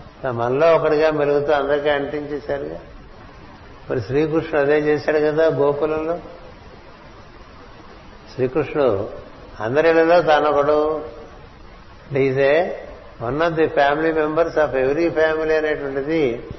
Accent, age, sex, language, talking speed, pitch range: native, 60-79, male, Telugu, 85 wpm, 125-150 Hz